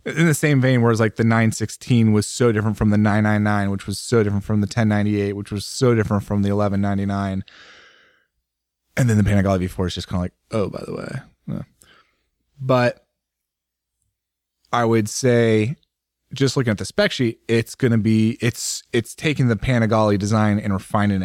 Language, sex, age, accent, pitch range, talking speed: English, male, 20-39, American, 100-120 Hz, 180 wpm